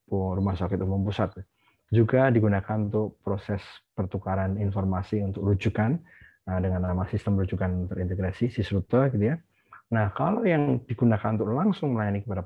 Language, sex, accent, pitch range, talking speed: Indonesian, male, native, 95-115 Hz, 140 wpm